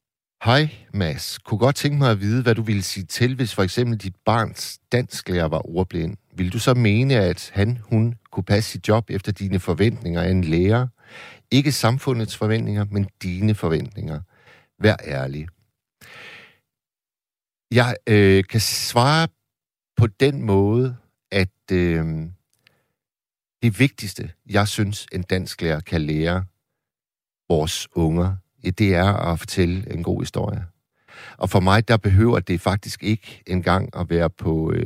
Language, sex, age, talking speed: Danish, male, 60-79, 145 wpm